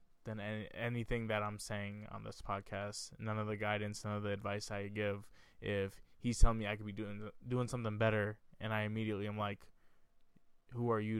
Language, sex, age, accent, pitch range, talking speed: English, male, 20-39, American, 105-110 Hz, 200 wpm